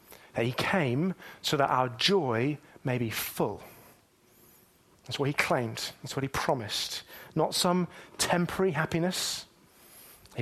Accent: British